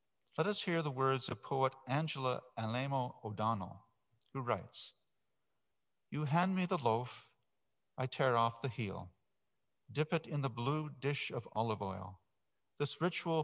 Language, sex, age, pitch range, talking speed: English, male, 50-69, 110-155 Hz, 145 wpm